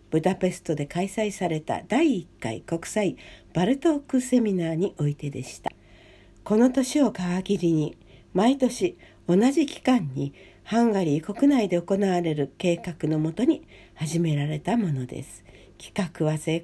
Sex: female